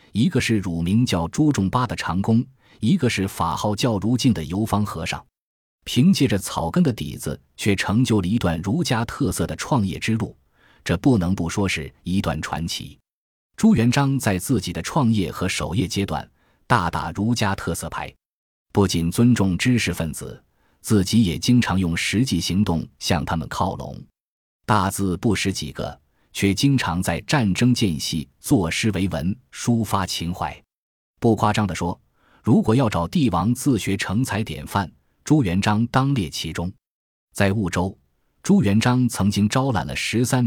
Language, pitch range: Chinese, 85-120 Hz